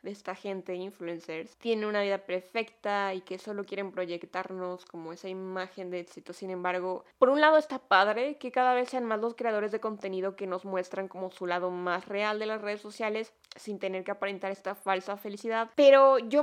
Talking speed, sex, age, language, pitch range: 200 wpm, female, 20-39, Spanish, 195-245 Hz